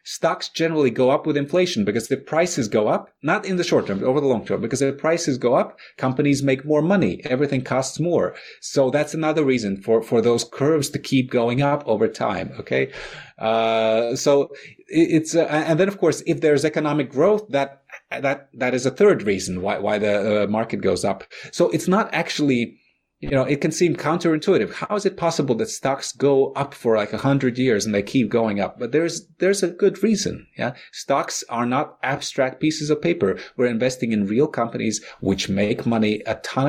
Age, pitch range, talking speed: 30-49, 105-145 Hz, 205 wpm